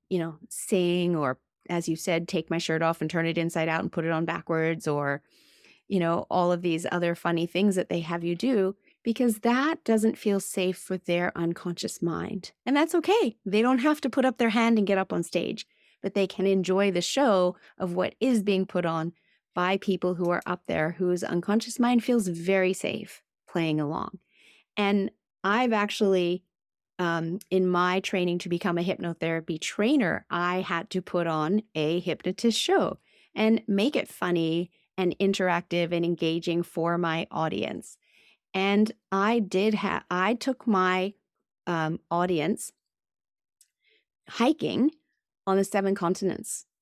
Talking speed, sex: 170 wpm, female